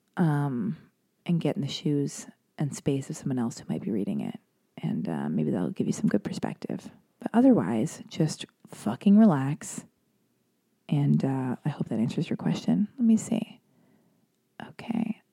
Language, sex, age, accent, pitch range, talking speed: English, female, 30-49, American, 160-215 Hz, 165 wpm